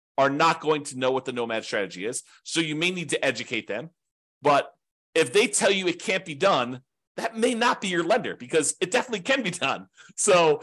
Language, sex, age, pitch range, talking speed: English, male, 40-59, 125-175 Hz, 220 wpm